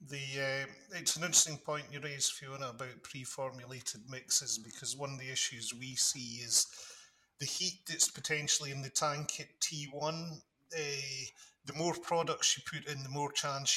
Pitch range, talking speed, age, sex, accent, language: 130-150 Hz, 170 wpm, 40-59, male, British, English